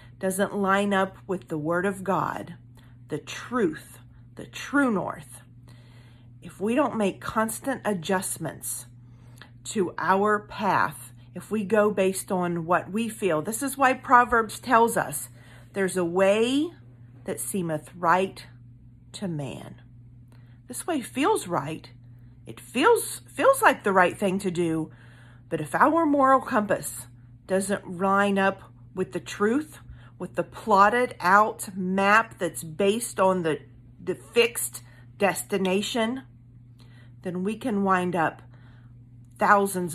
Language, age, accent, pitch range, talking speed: English, 40-59, American, 120-200 Hz, 130 wpm